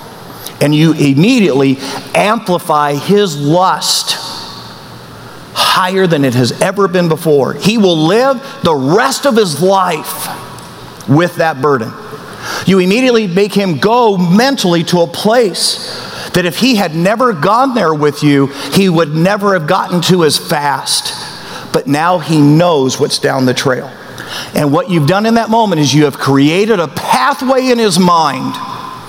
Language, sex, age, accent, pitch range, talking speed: English, male, 50-69, American, 150-205 Hz, 155 wpm